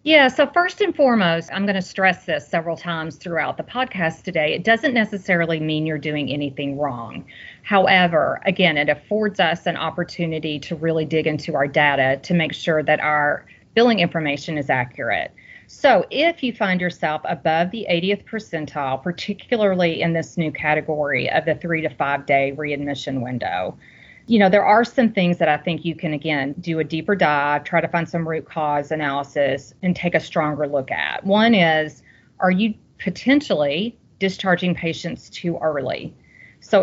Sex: female